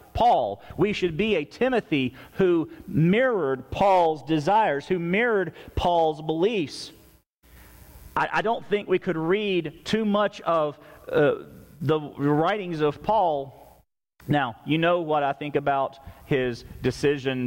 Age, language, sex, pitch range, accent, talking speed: 40-59, English, male, 130-170 Hz, American, 130 wpm